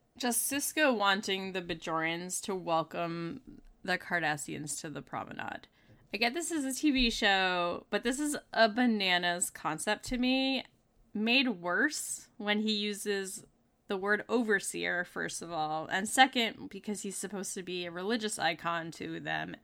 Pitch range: 160-210 Hz